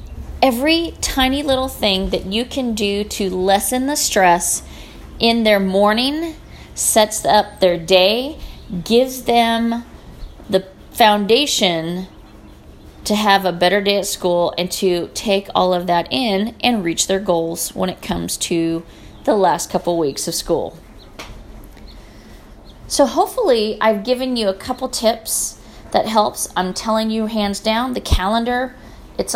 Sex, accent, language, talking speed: female, American, English, 140 wpm